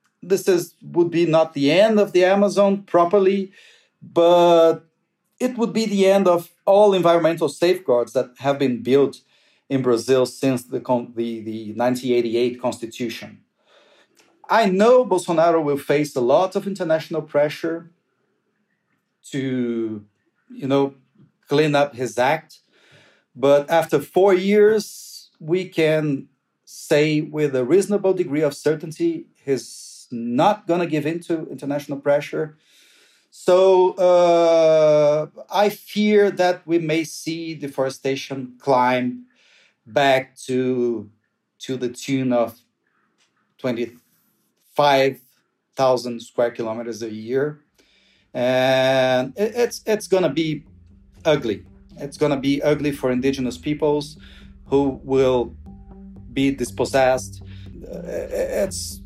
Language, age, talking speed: English, 40-59, 115 wpm